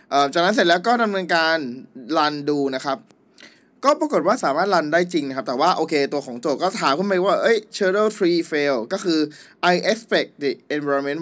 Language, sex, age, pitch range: Thai, male, 20-39, 140-180 Hz